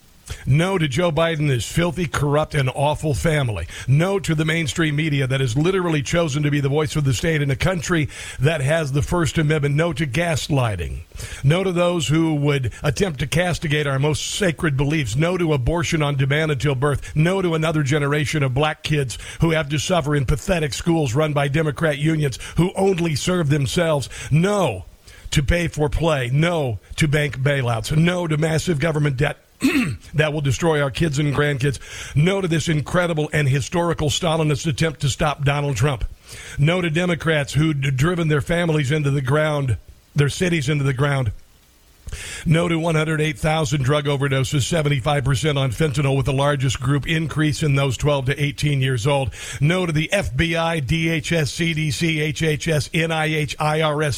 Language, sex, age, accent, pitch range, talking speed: English, male, 50-69, American, 140-165 Hz, 170 wpm